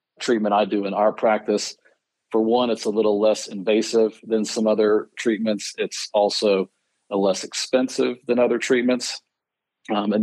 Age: 40-59